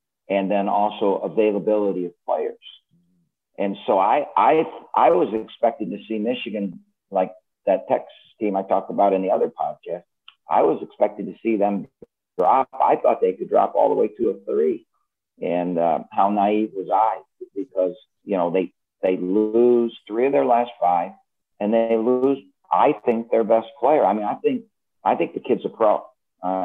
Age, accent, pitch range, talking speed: 50-69, American, 95-125 Hz, 180 wpm